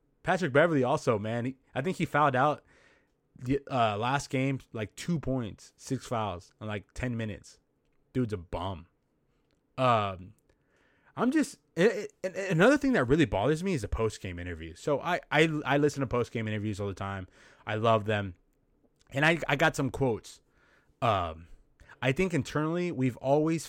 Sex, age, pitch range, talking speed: male, 20-39, 110-175 Hz, 165 wpm